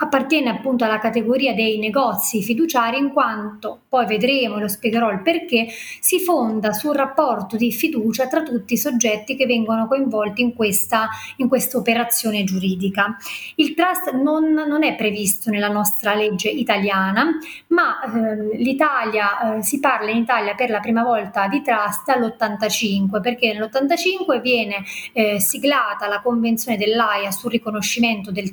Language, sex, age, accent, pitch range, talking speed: Italian, female, 30-49, native, 215-275 Hz, 145 wpm